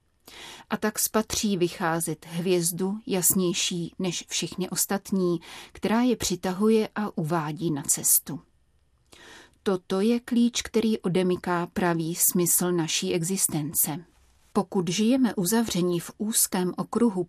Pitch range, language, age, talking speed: 170-200 Hz, Czech, 30-49, 110 wpm